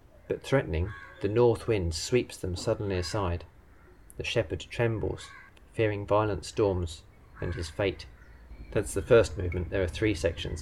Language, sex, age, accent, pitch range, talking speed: English, male, 30-49, British, 85-110 Hz, 145 wpm